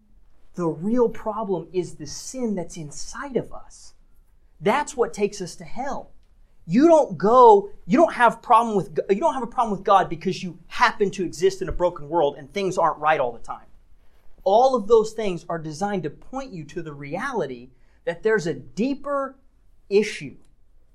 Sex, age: male, 40-59